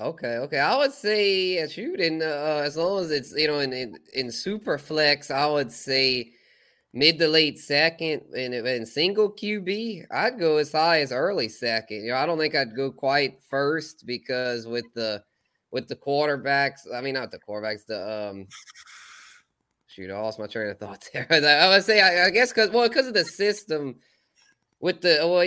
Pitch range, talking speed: 115-155 Hz, 195 wpm